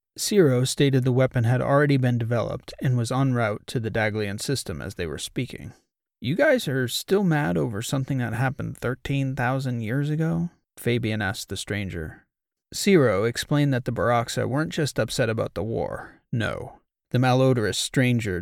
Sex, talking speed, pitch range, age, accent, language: male, 165 wpm, 115-140 Hz, 30-49, American, English